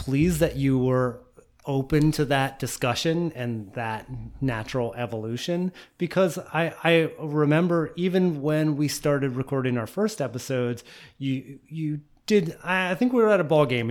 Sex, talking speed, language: male, 145 wpm, English